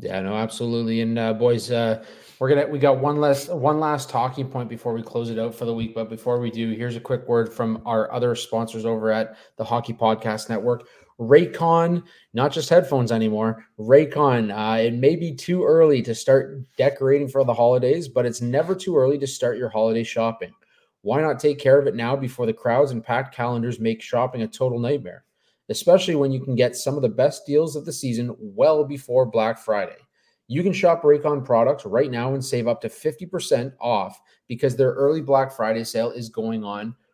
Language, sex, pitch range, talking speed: English, male, 115-145 Hz, 205 wpm